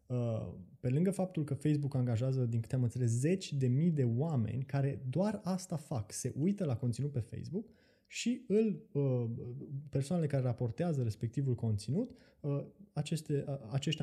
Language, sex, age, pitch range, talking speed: Romanian, male, 20-39, 115-155 Hz, 135 wpm